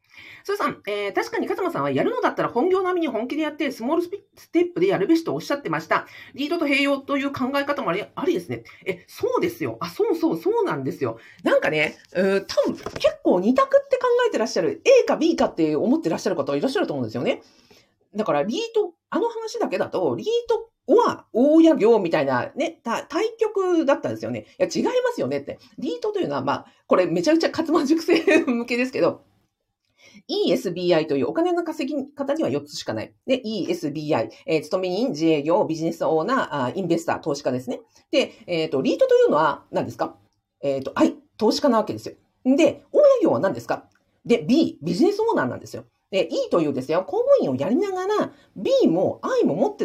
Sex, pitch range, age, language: female, 245-385 Hz, 40-59, Japanese